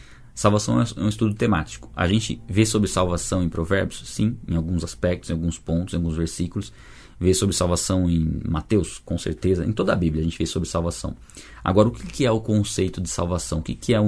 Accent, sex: Brazilian, male